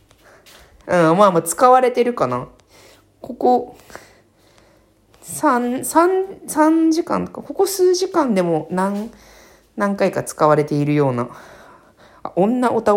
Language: Japanese